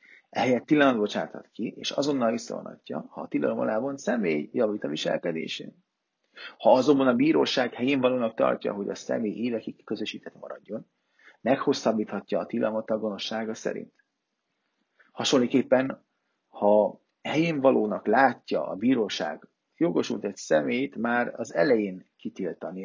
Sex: male